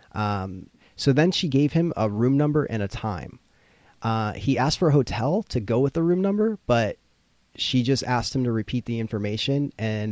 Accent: American